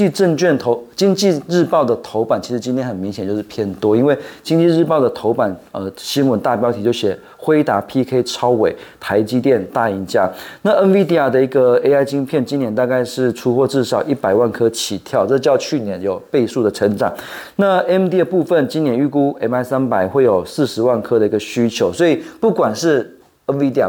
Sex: male